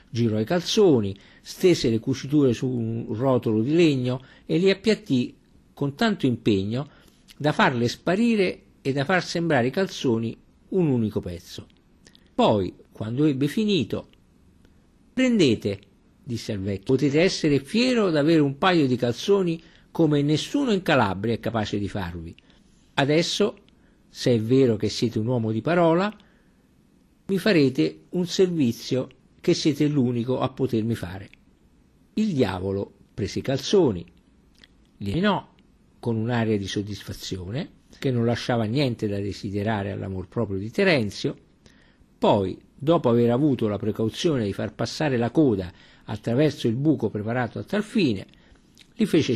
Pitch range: 110-165 Hz